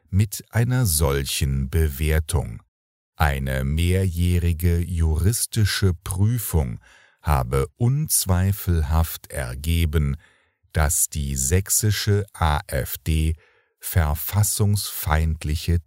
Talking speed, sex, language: 60 wpm, male, English